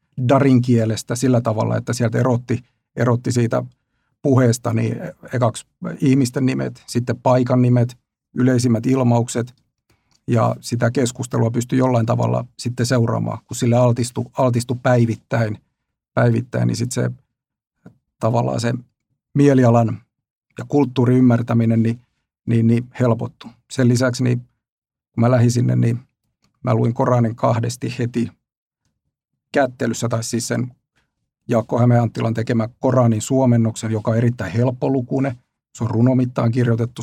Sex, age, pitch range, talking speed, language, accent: male, 50-69, 115-125 Hz, 120 wpm, Finnish, native